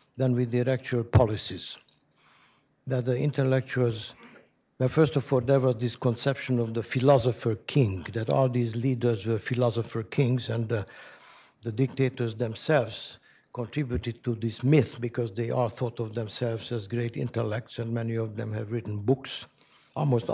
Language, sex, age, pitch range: English, male, 60-79, 115-130 Hz